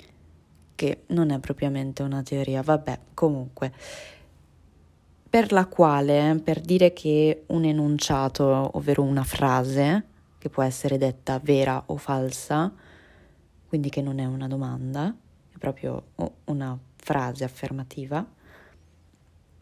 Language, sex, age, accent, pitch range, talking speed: Italian, female, 20-39, native, 135-160 Hz, 115 wpm